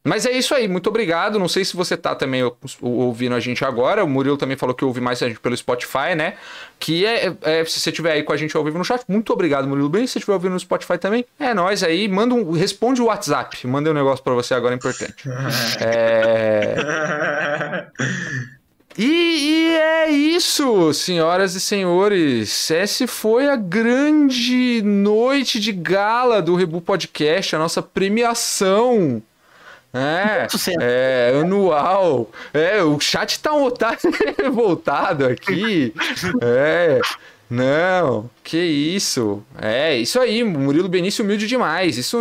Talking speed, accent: 155 wpm, Brazilian